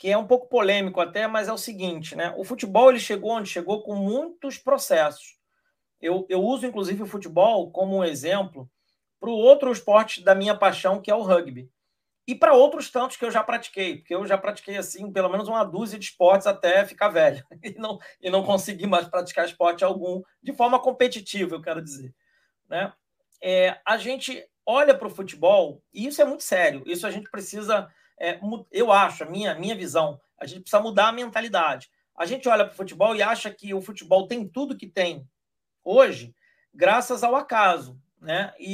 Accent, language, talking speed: Brazilian, Portuguese, 190 wpm